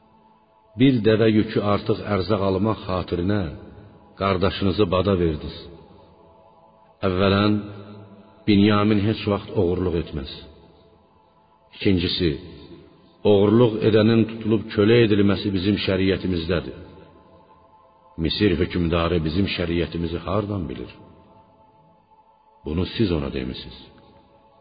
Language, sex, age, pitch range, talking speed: Persian, male, 60-79, 80-105 Hz, 85 wpm